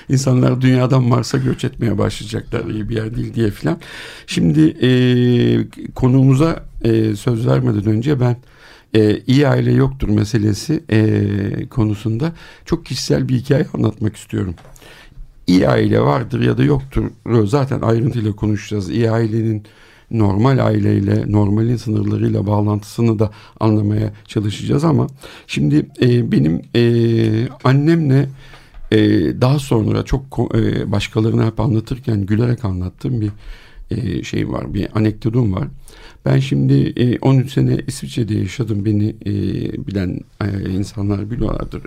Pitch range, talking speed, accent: 105-130 Hz, 125 wpm, native